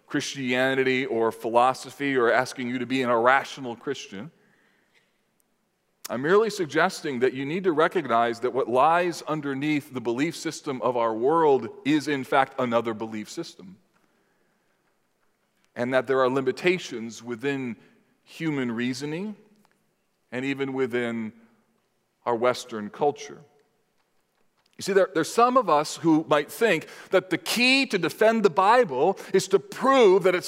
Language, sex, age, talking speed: English, male, 40-59, 140 wpm